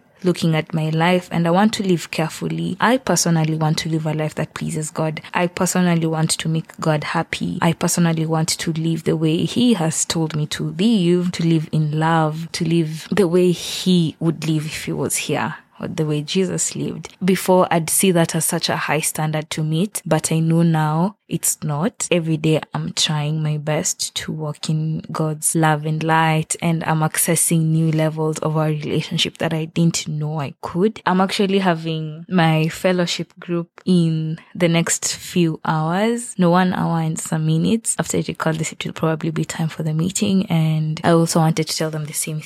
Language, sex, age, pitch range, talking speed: English, female, 20-39, 155-175 Hz, 200 wpm